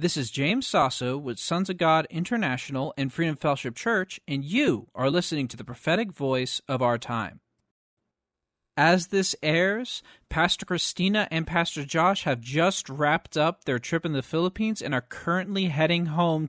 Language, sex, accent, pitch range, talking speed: English, male, American, 135-180 Hz, 165 wpm